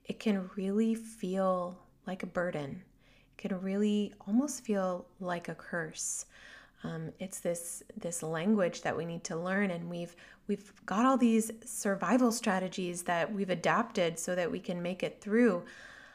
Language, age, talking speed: English, 20-39, 160 wpm